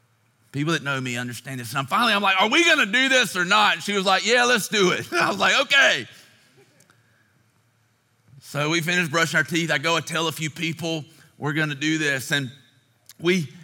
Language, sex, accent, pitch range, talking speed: English, male, American, 145-180 Hz, 225 wpm